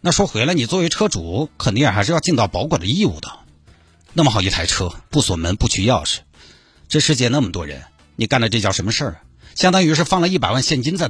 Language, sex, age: Chinese, male, 50-69